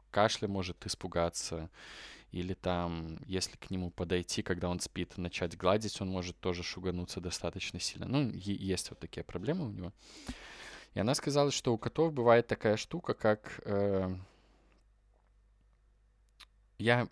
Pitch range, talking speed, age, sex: 90-110 Hz, 135 wpm, 20-39, male